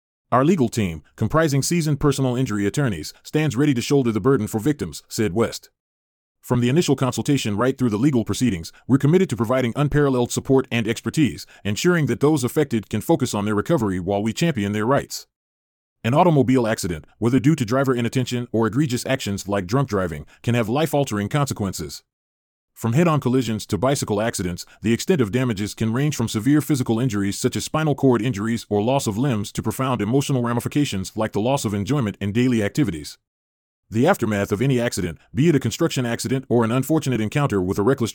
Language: English